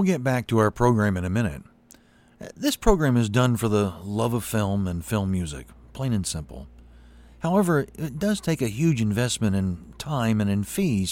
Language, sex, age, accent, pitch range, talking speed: English, male, 40-59, American, 90-135 Hz, 190 wpm